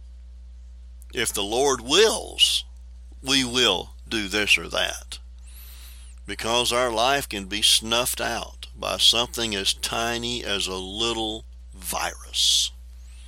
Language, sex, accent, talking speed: English, male, American, 115 wpm